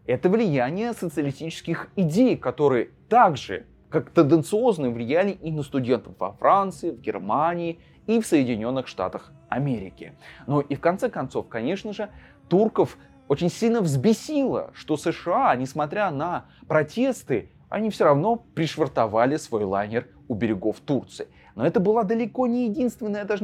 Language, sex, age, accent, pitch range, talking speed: Russian, male, 20-39, native, 140-210 Hz, 135 wpm